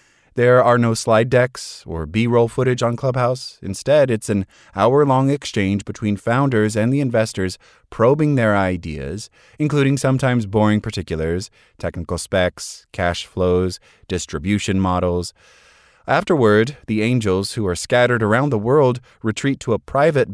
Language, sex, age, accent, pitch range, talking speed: English, male, 30-49, American, 95-125 Hz, 135 wpm